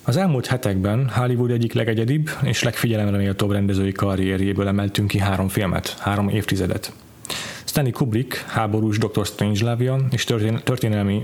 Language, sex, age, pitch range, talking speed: Hungarian, male, 30-49, 105-125 Hz, 135 wpm